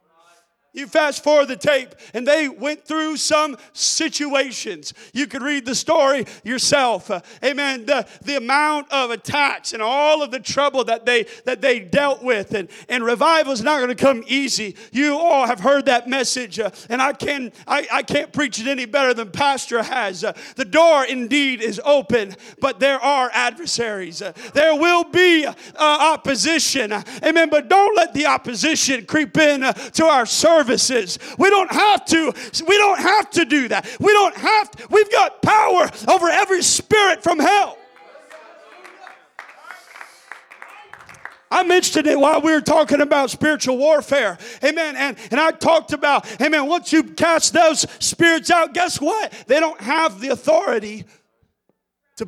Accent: American